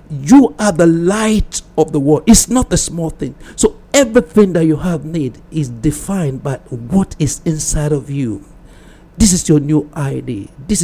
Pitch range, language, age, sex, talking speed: 135-170 Hz, English, 60-79, male, 175 wpm